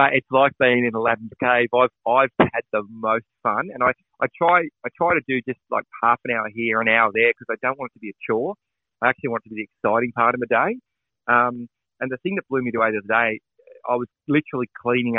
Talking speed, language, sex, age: 265 wpm, English, male, 30-49